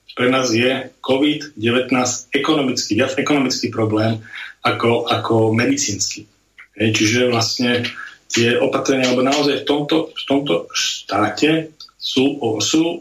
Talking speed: 110 wpm